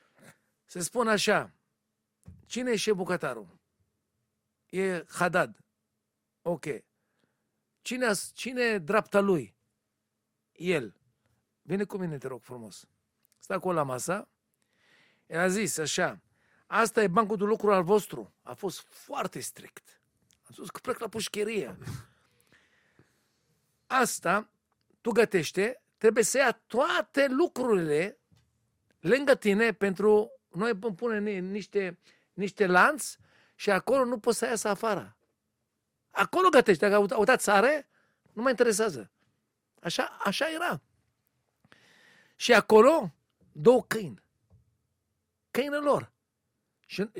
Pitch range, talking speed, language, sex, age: 175-230 Hz, 110 wpm, Romanian, male, 50-69